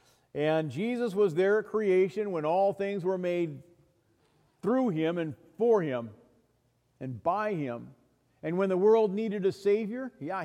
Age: 50-69